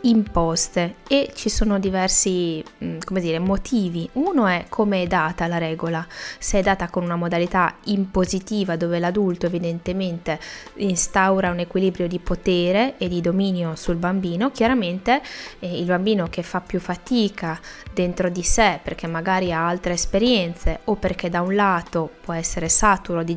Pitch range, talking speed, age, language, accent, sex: 175-210 Hz, 155 wpm, 20-39, Italian, native, female